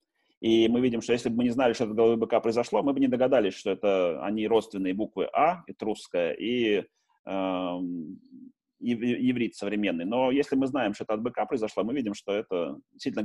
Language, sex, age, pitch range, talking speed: Russian, male, 30-49, 105-125 Hz, 205 wpm